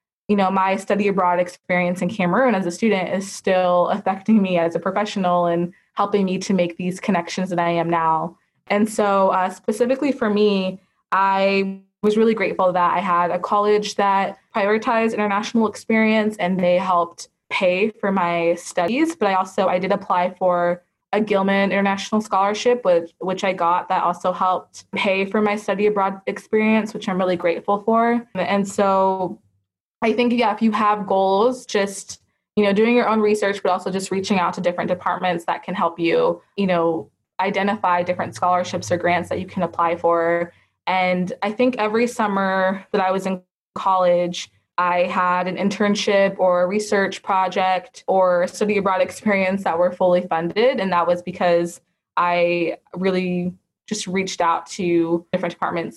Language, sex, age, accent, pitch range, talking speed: English, female, 20-39, American, 180-205 Hz, 175 wpm